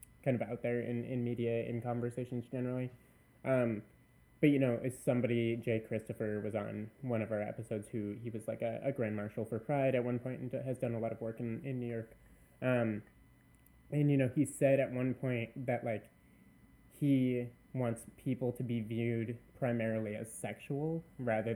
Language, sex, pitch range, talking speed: English, male, 115-130 Hz, 190 wpm